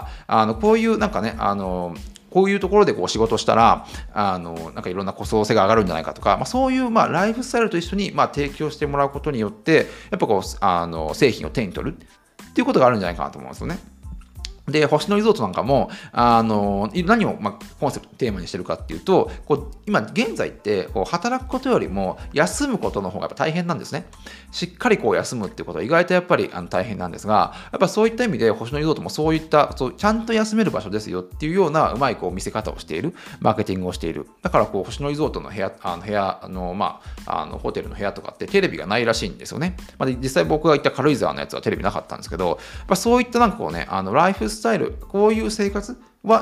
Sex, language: male, Japanese